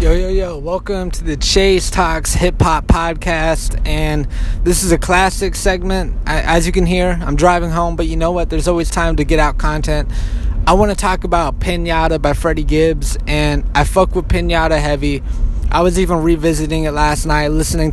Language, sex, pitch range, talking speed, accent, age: English, male, 150-175 Hz, 195 wpm, American, 20-39